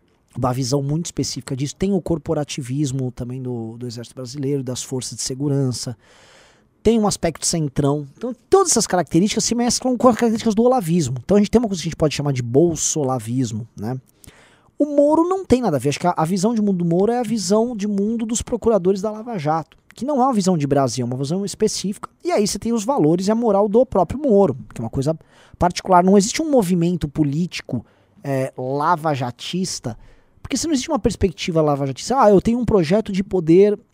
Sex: male